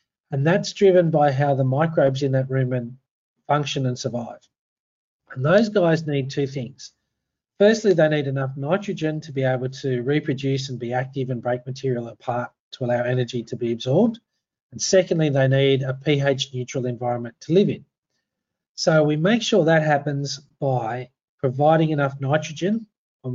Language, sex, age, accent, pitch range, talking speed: English, male, 40-59, Australian, 130-155 Hz, 165 wpm